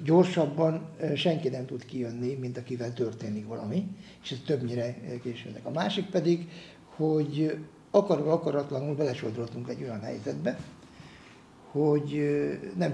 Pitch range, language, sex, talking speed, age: 130-175 Hz, Hungarian, male, 110 wpm, 60-79